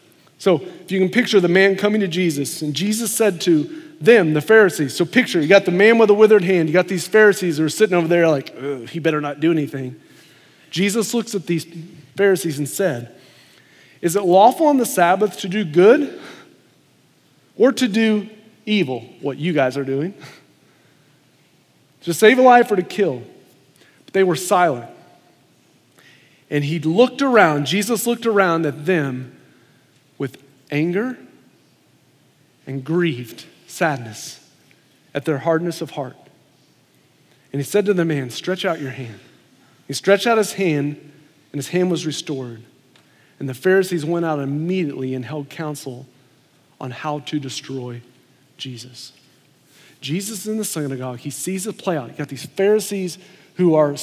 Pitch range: 140-200 Hz